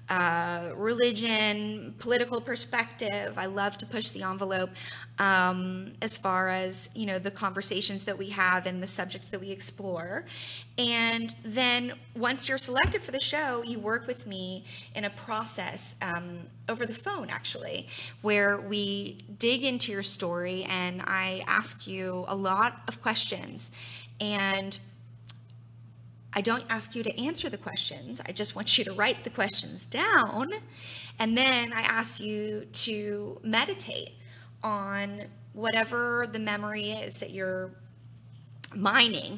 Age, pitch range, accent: 20-39, 185-230 Hz, American